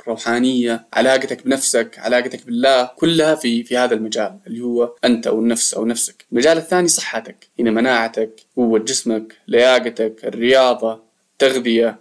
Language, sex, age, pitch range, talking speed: Arabic, male, 20-39, 120-155 Hz, 135 wpm